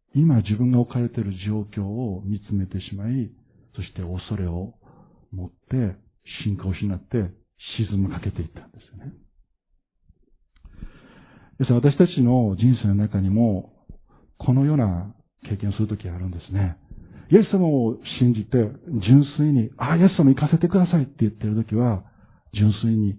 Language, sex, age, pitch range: Japanese, male, 50-69, 100-140 Hz